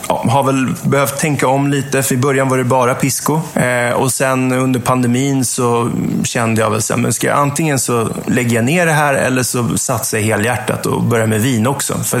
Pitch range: 110-135 Hz